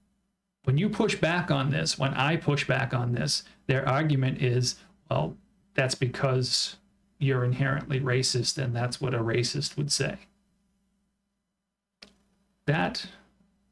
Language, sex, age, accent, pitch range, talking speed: English, male, 40-59, American, 140-200 Hz, 125 wpm